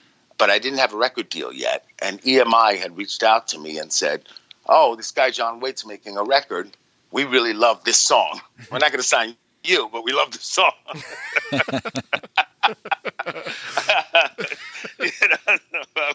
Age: 50-69